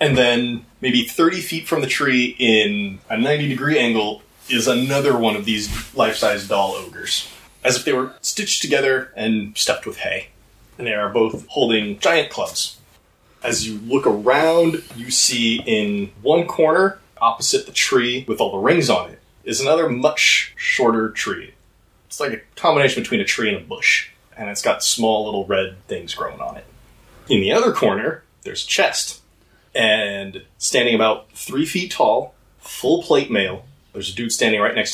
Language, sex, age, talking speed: English, male, 20-39, 175 wpm